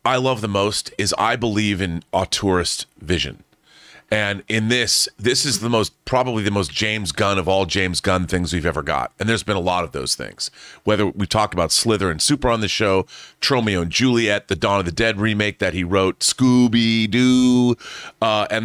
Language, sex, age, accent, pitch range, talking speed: English, male, 30-49, American, 95-120 Hz, 200 wpm